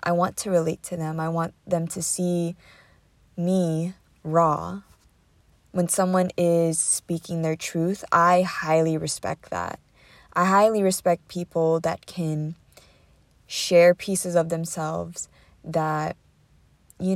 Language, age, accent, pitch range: English, 20-39, American, 155-185 Hz